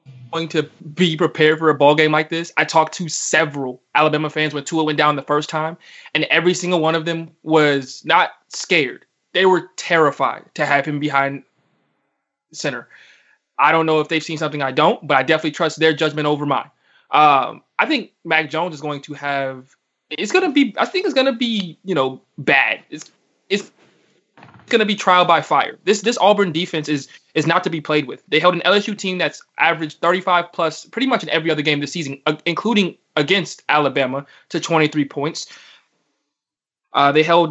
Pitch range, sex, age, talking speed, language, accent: 150-175 Hz, male, 20-39, 200 wpm, English, American